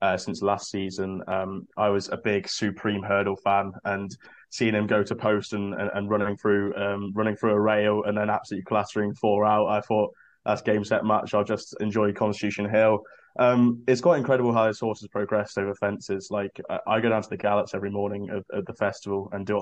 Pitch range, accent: 100-110 Hz, British